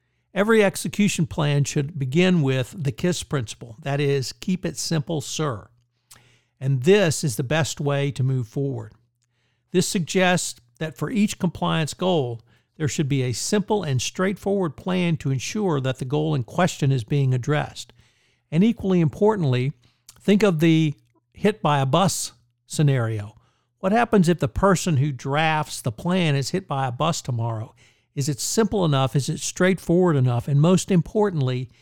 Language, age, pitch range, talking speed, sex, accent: English, 60-79, 120-165 Hz, 160 wpm, male, American